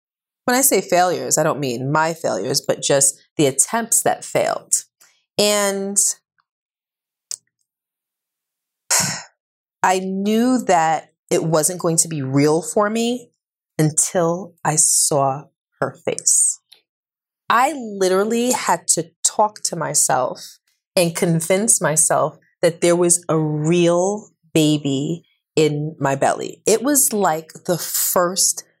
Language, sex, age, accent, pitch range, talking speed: English, female, 30-49, American, 155-205 Hz, 115 wpm